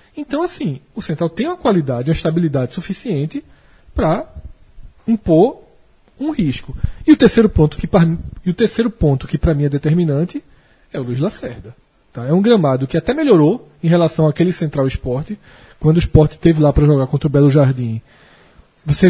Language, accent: Portuguese, Brazilian